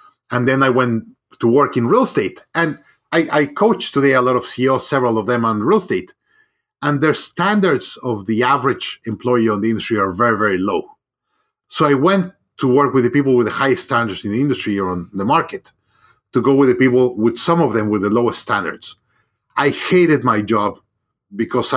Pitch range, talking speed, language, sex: 120-150 Hz, 205 wpm, English, male